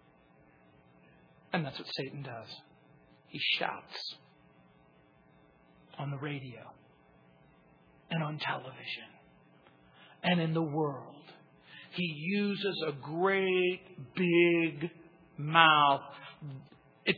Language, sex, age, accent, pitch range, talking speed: English, male, 50-69, American, 145-215 Hz, 85 wpm